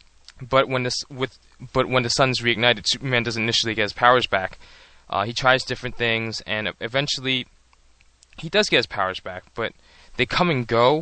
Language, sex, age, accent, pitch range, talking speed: English, male, 20-39, American, 105-125 Hz, 185 wpm